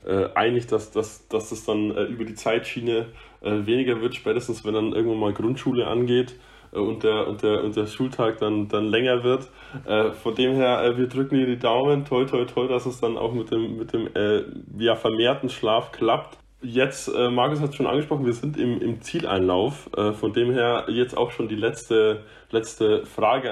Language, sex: English, male